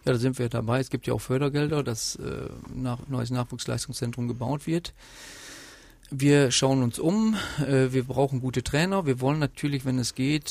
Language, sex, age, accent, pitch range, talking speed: German, male, 40-59, German, 130-155 Hz, 175 wpm